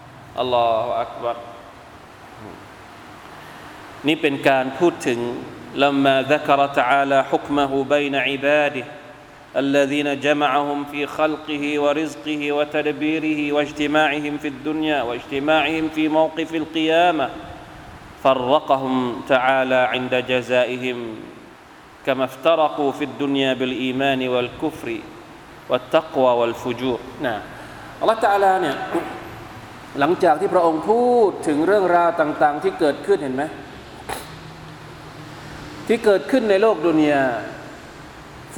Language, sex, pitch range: Thai, male, 135-160 Hz